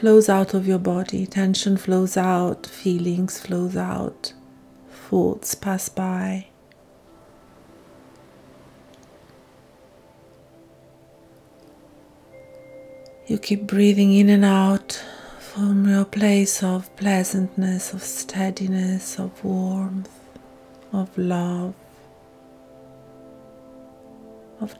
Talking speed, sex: 75 wpm, female